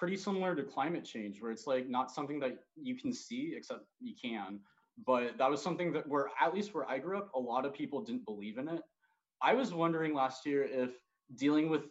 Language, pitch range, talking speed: English, 130-195 Hz, 225 wpm